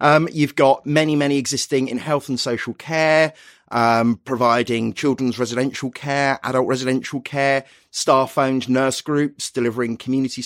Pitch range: 115-140 Hz